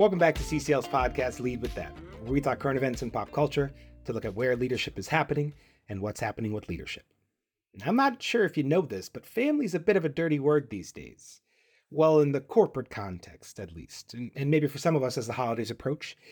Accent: American